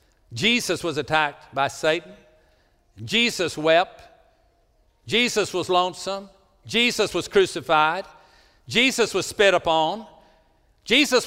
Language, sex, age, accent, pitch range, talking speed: English, male, 60-79, American, 165-220 Hz, 95 wpm